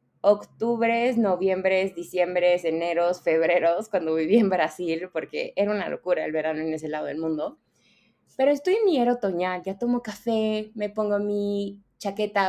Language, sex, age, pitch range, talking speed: Spanish, female, 20-39, 175-225 Hz, 160 wpm